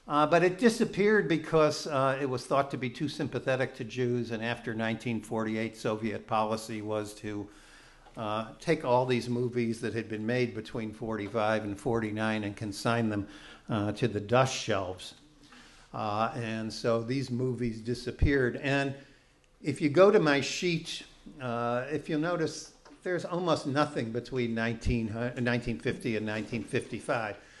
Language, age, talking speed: English, 50-69, 150 wpm